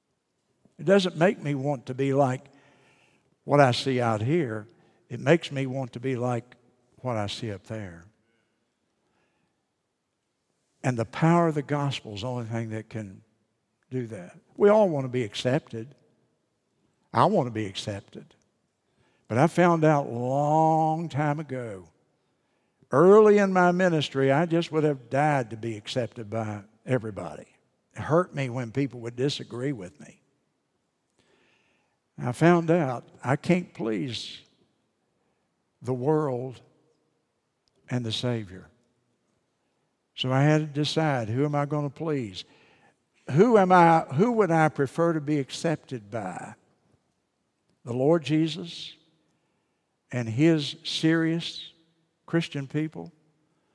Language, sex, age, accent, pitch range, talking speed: English, male, 60-79, American, 120-160 Hz, 135 wpm